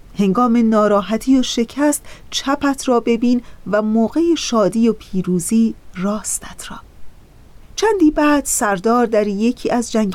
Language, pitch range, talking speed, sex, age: Persian, 195-250 Hz, 125 wpm, female, 40-59